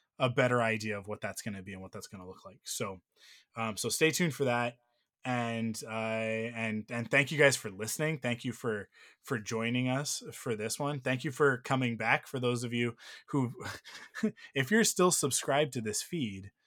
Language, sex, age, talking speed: English, male, 20-39, 210 wpm